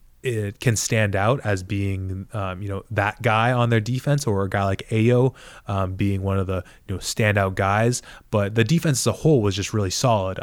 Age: 20-39